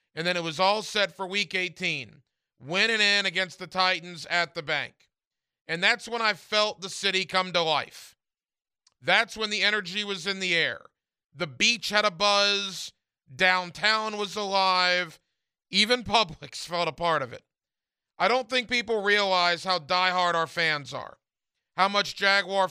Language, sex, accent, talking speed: English, male, American, 165 wpm